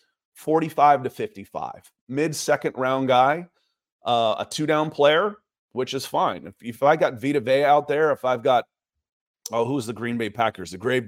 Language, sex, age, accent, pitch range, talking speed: English, male, 30-49, American, 120-155 Hz, 185 wpm